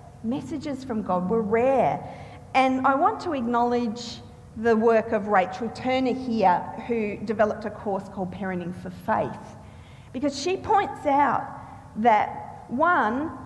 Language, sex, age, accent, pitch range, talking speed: English, female, 40-59, Australian, 195-275 Hz, 135 wpm